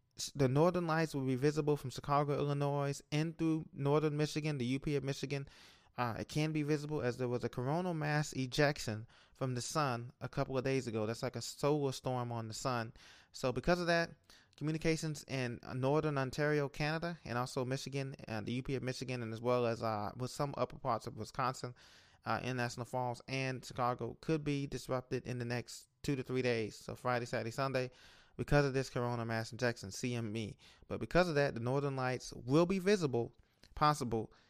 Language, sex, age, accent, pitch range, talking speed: English, male, 20-39, American, 120-145 Hz, 195 wpm